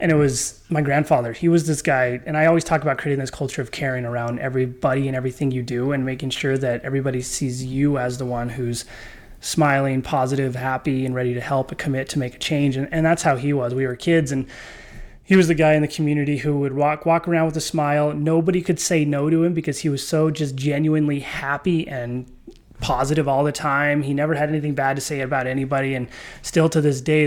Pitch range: 130-155 Hz